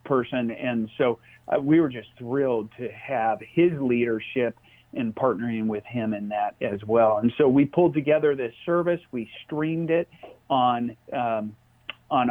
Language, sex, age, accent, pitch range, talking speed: English, male, 40-59, American, 115-150 Hz, 160 wpm